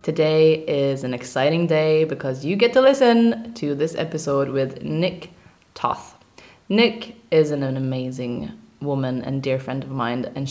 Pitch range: 140-185 Hz